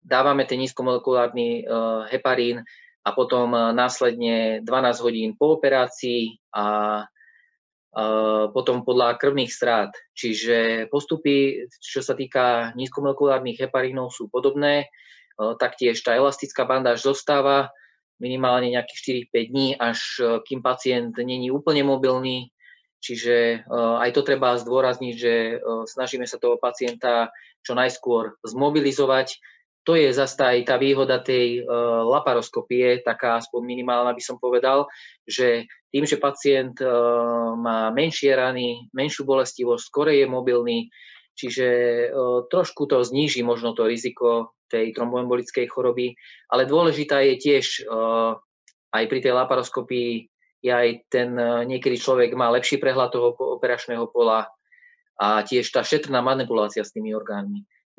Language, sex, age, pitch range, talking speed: Slovak, male, 20-39, 120-135 Hz, 120 wpm